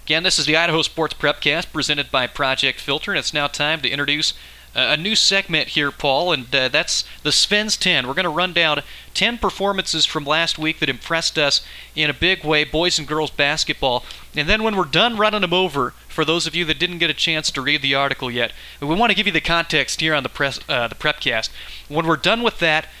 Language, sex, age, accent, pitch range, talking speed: English, male, 30-49, American, 140-175 Hz, 230 wpm